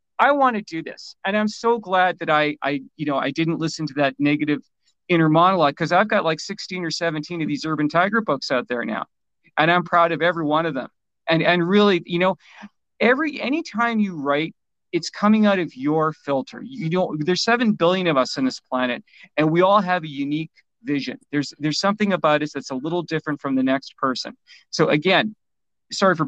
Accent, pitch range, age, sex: American, 150-185 Hz, 40-59, male